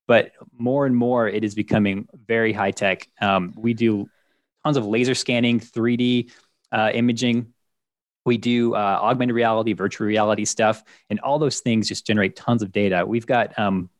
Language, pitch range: English, 105-125 Hz